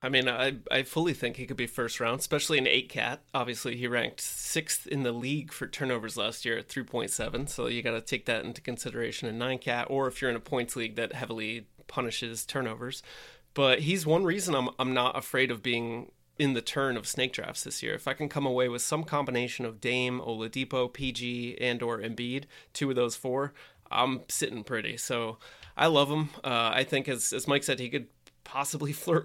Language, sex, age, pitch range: English, male, 30-49, 120-135 Hz